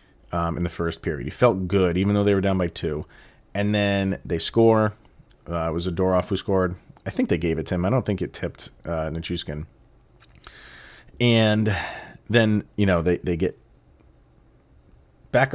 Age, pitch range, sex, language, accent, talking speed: 30-49, 85-105 Hz, male, English, American, 180 wpm